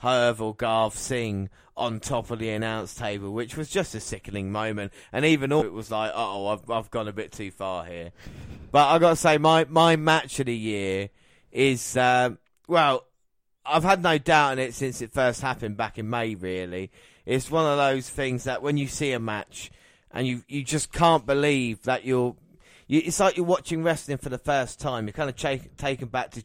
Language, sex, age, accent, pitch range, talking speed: English, male, 30-49, British, 110-140 Hz, 220 wpm